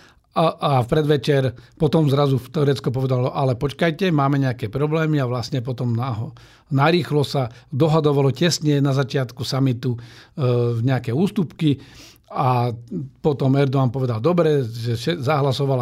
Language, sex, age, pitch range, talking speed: Slovak, male, 50-69, 125-150 Hz, 135 wpm